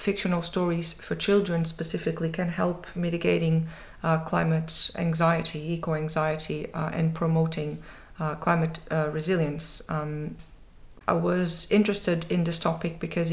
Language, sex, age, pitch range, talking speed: English, female, 30-49, 155-170 Hz, 120 wpm